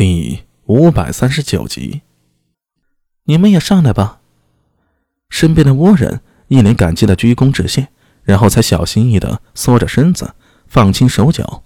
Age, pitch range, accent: 20-39, 95-135 Hz, native